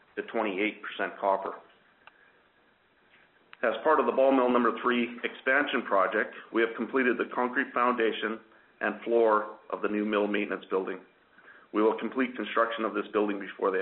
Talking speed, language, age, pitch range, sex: 155 wpm, English, 40-59, 105-120 Hz, male